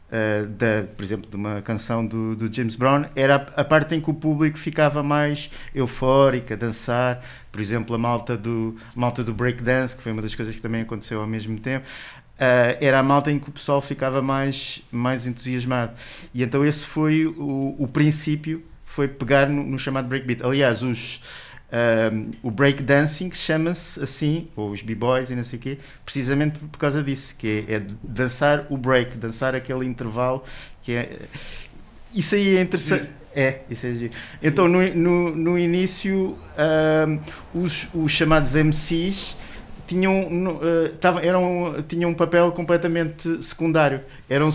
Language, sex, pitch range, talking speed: Portuguese, male, 125-160 Hz, 175 wpm